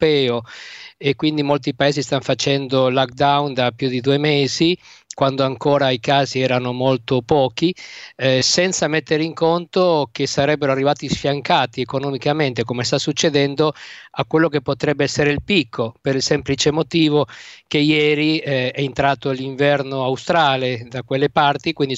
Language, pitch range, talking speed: Italian, 130-150 Hz, 145 wpm